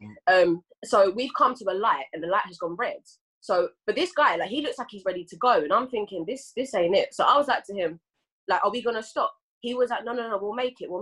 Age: 20-39